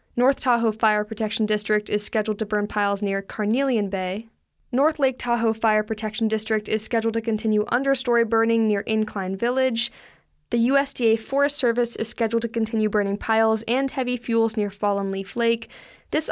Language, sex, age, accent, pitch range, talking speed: English, female, 10-29, American, 210-240 Hz, 170 wpm